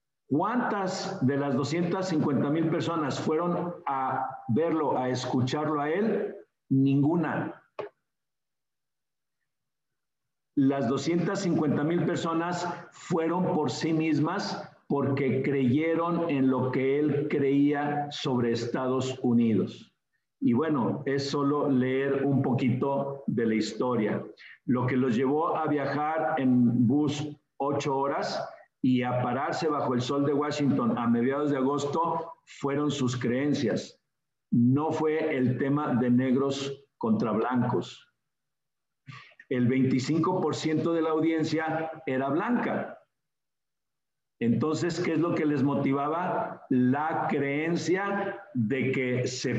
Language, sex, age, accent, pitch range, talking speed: Spanish, male, 50-69, Mexican, 130-155 Hz, 110 wpm